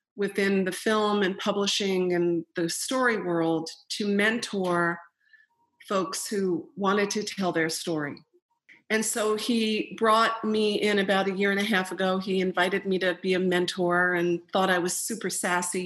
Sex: female